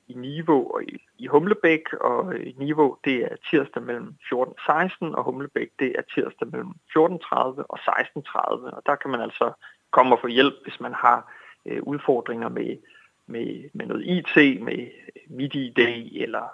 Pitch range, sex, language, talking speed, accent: 120-150 Hz, male, Danish, 165 wpm, native